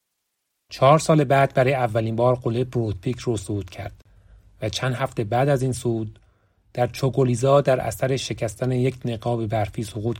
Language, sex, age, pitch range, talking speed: Persian, male, 30-49, 105-135 Hz, 160 wpm